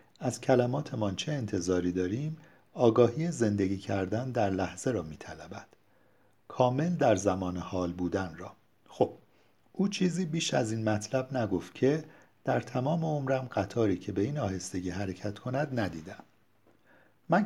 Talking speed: 140 wpm